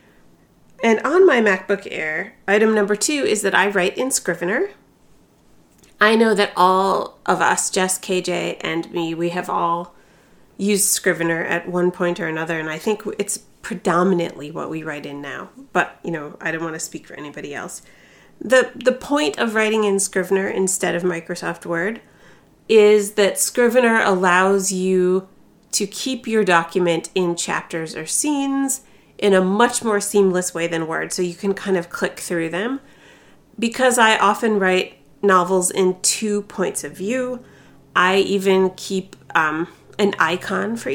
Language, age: English, 30-49